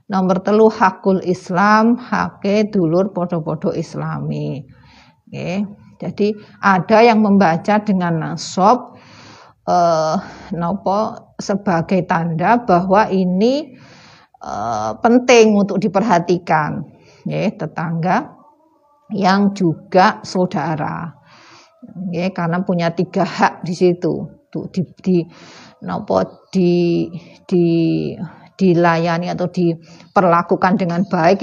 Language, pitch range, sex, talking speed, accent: Indonesian, 175-210 Hz, female, 90 wpm, native